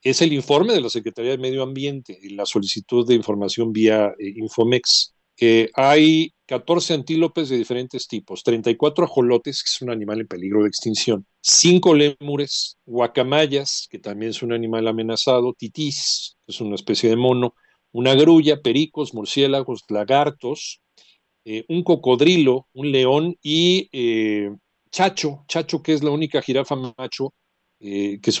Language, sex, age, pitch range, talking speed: Spanish, male, 40-59, 110-145 Hz, 155 wpm